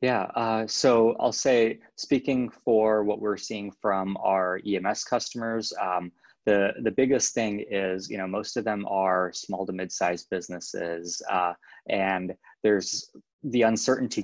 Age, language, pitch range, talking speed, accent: 20-39, English, 95-110 Hz, 150 wpm, American